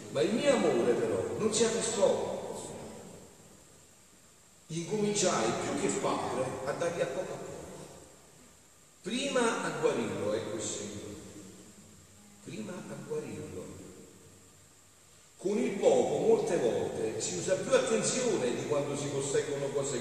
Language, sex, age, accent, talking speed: Italian, male, 40-59, native, 125 wpm